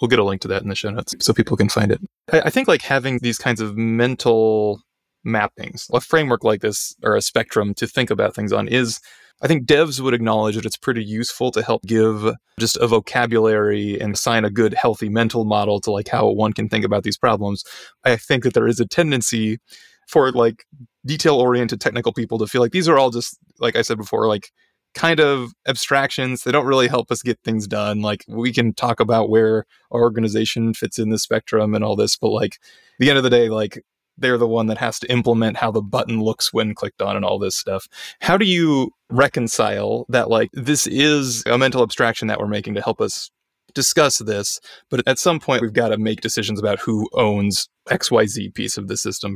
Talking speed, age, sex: 220 wpm, 20-39, male